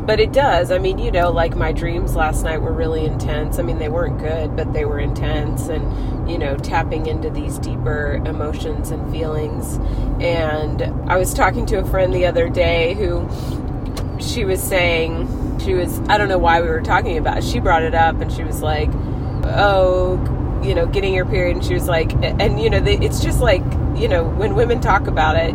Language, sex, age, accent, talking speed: English, female, 30-49, American, 210 wpm